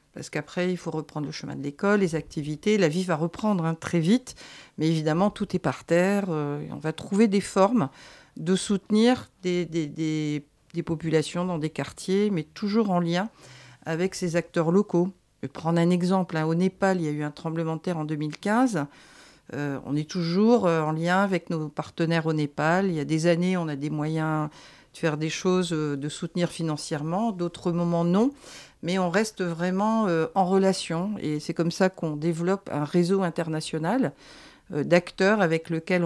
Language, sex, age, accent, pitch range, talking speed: French, female, 50-69, French, 155-185 Hz, 185 wpm